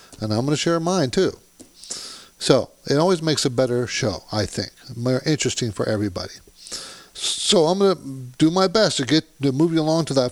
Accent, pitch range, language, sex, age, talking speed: American, 120-155 Hz, English, male, 50-69, 205 wpm